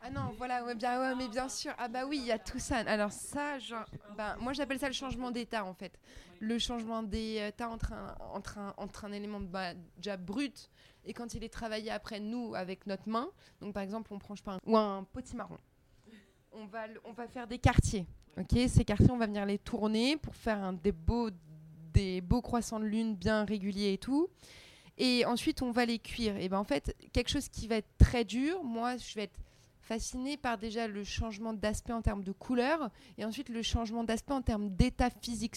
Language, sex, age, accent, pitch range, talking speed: French, female, 20-39, French, 205-250 Hz, 220 wpm